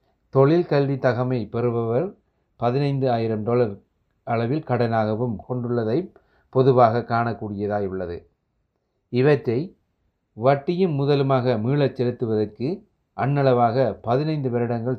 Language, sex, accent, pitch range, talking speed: Tamil, male, native, 110-135 Hz, 80 wpm